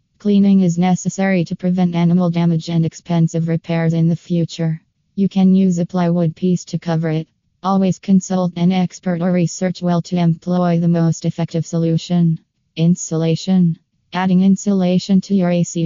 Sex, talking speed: female, 155 wpm